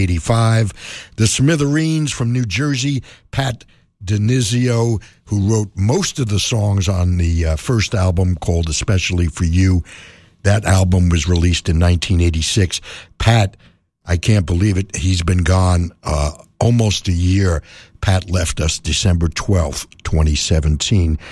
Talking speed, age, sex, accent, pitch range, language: 130 wpm, 60-79, male, American, 90-115 Hz, English